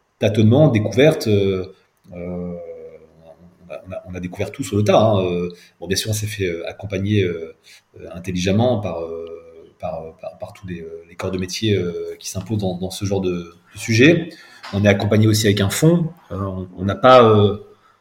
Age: 30-49